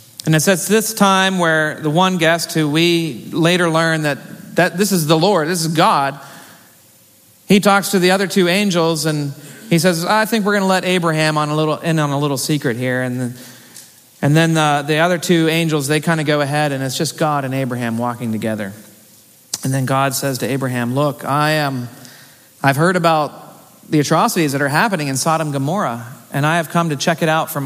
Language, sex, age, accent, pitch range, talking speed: English, male, 40-59, American, 130-175 Hz, 215 wpm